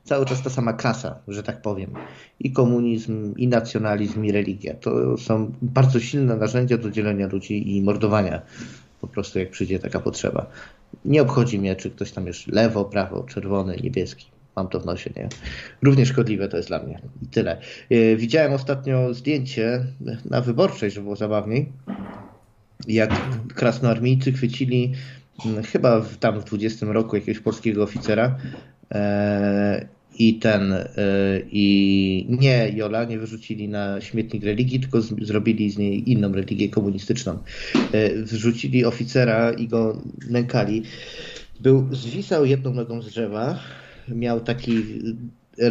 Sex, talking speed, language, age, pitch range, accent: male, 140 wpm, Polish, 20-39, 105-120 Hz, native